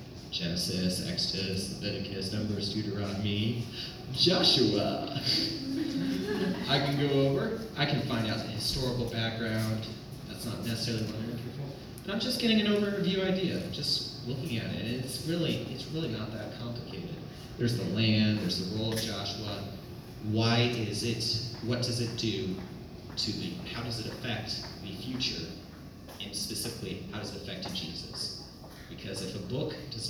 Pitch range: 105-130 Hz